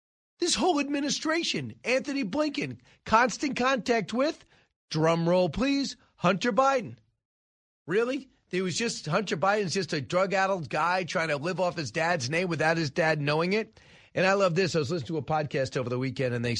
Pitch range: 150-220 Hz